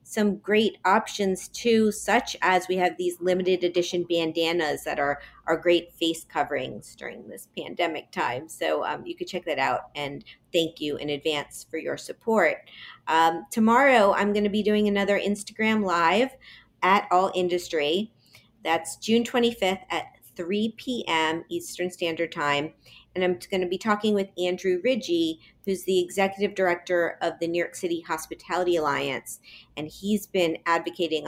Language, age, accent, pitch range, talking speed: English, 40-59, American, 160-205 Hz, 160 wpm